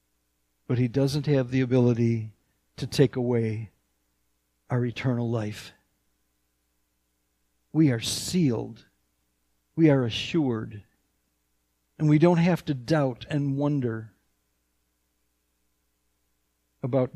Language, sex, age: English, male, 60-79